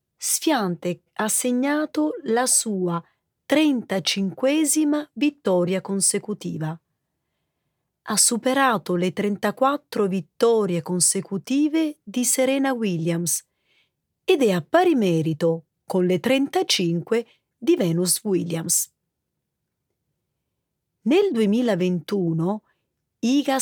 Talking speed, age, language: 80 wpm, 30-49, Italian